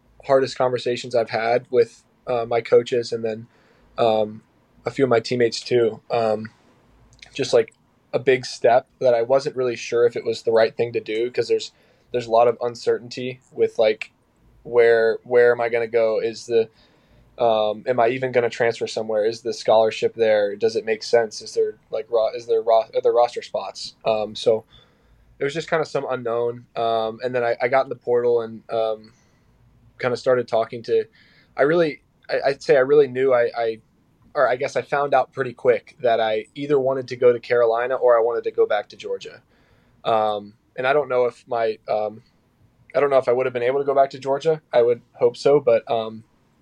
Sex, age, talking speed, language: male, 10-29, 220 wpm, English